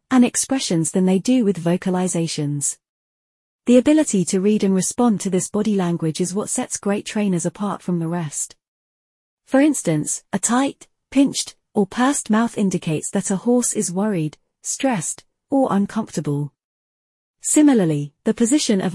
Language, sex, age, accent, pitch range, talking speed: English, female, 30-49, British, 175-230 Hz, 150 wpm